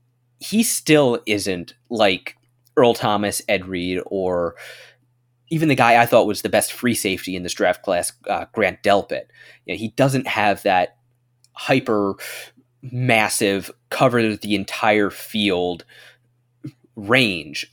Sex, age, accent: male, 20-39, American